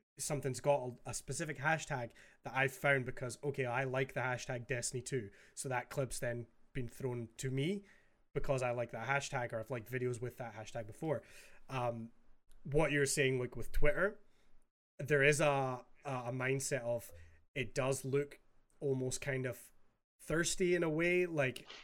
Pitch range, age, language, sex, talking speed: 125-145 Hz, 20-39, English, male, 170 wpm